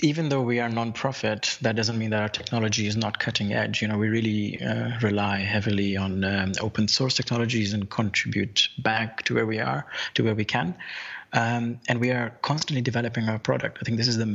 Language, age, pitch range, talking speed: English, 30-49, 105-115 Hz, 215 wpm